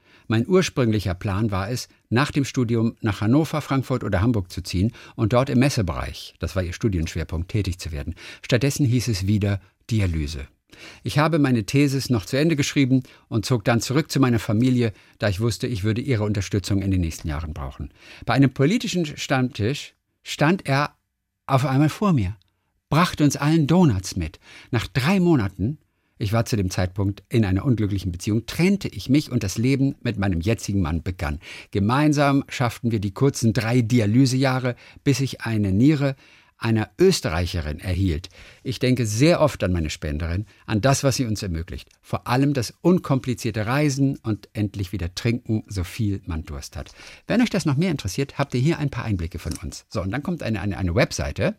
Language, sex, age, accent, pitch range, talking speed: German, male, 50-69, German, 95-135 Hz, 185 wpm